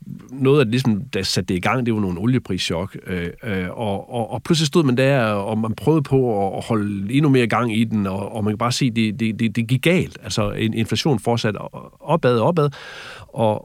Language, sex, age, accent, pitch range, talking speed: English, male, 40-59, Danish, 100-130 Hz, 230 wpm